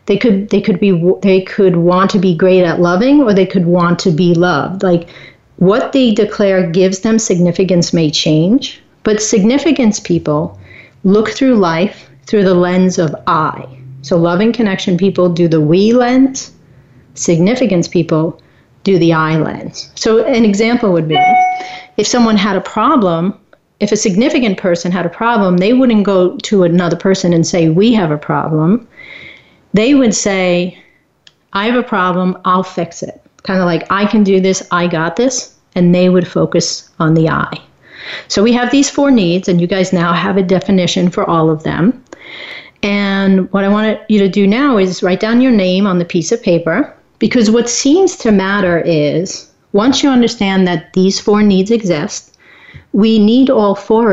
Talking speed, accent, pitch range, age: 180 wpm, American, 175-220 Hz, 40-59